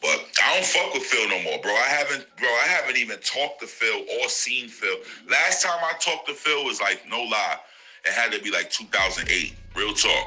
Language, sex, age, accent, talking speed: English, male, 30-49, American, 235 wpm